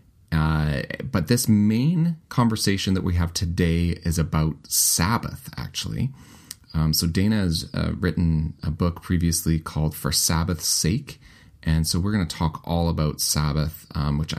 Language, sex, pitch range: English, male, 80-95 Hz